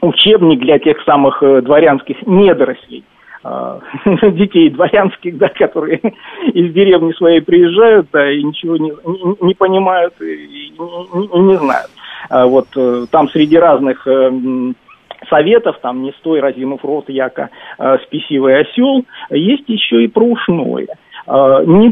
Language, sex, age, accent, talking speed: Russian, male, 50-69, native, 120 wpm